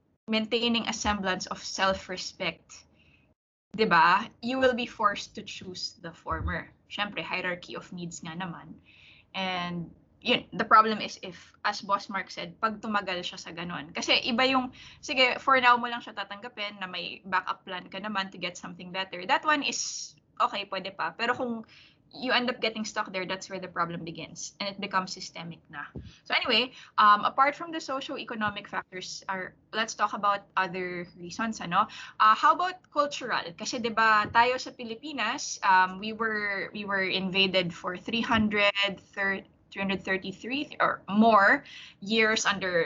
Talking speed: 160 wpm